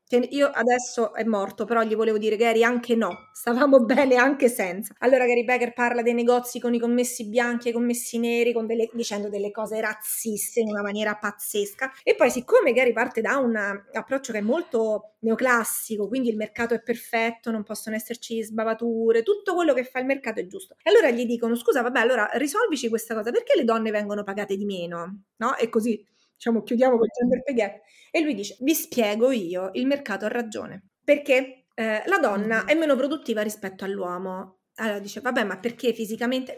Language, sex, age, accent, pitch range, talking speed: Italian, female, 30-49, native, 215-260 Hz, 195 wpm